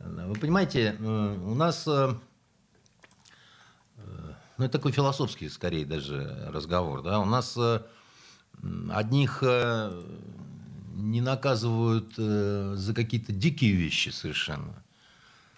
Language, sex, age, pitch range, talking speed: Russian, male, 50-69, 95-130 Hz, 85 wpm